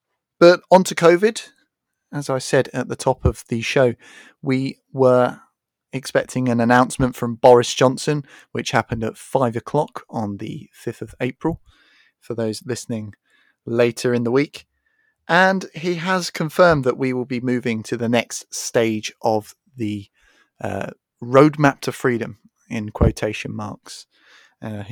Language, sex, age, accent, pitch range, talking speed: English, male, 30-49, British, 115-145 Hz, 145 wpm